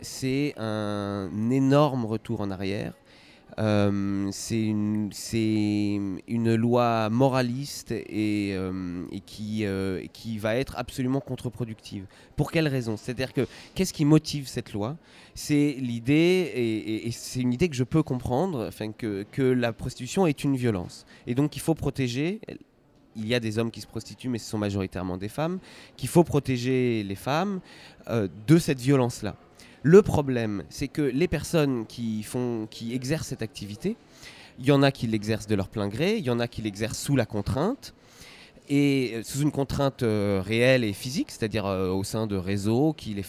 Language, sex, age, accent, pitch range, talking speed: French, male, 30-49, French, 105-140 Hz, 175 wpm